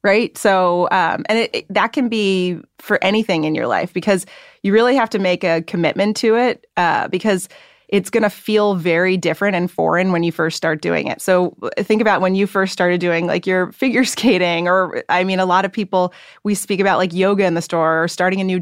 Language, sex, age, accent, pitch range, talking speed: English, female, 30-49, American, 175-205 Hz, 220 wpm